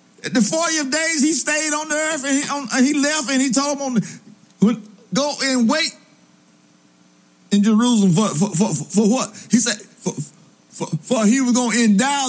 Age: 50-69